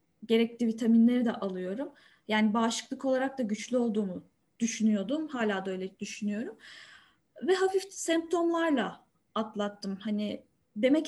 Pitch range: 230-310 Hz